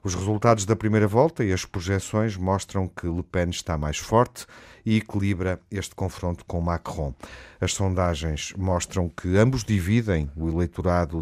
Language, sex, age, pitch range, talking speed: Portuguese, male, 50-69, 85-105 Hz, 155 wpm